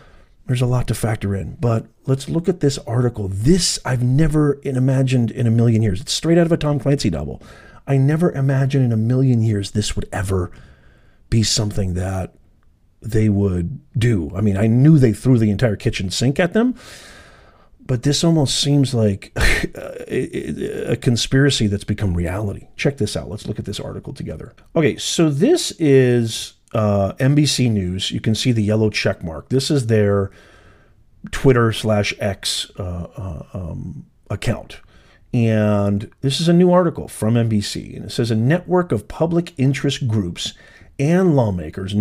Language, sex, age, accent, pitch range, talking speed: English, male, 40-59, American, 105-145 Hz, 170 wpm